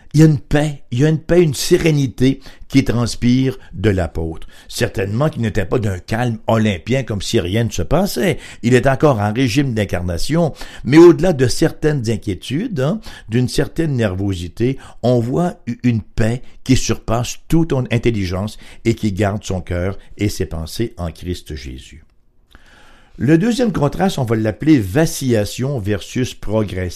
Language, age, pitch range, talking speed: English, 60-79, 100-145 Hz, 160 wpm